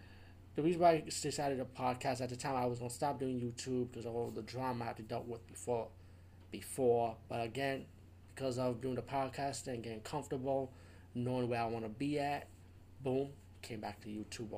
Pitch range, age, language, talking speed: 95-135 Hz, 30-49, English, 210 wpm